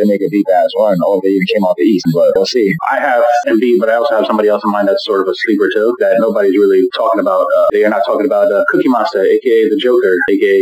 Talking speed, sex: 285 wpm, male